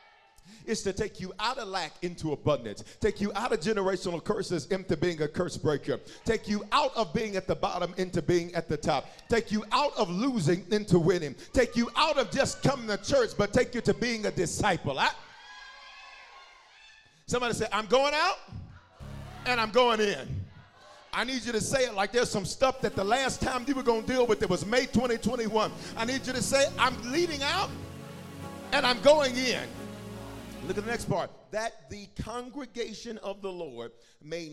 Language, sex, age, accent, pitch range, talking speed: English, male, 40-59, American, 145-235 Hz, 195 wpm